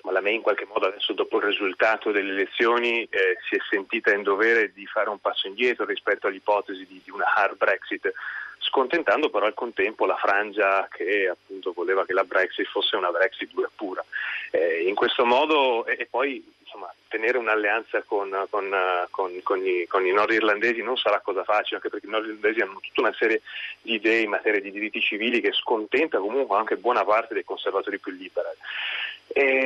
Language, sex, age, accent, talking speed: Italian, male, 30-49, native, 190 wpm